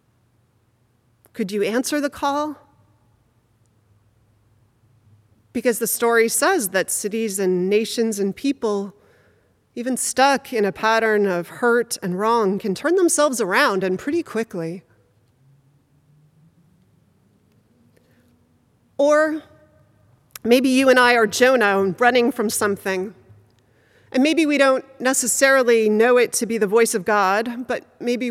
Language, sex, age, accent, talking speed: English, female, 30-49, American, 120 wpm